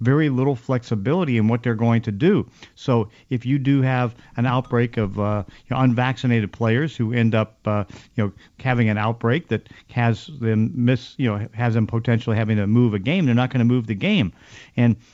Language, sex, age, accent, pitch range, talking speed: English, male, 50-69, American, 115-130 Hz, 200 wpm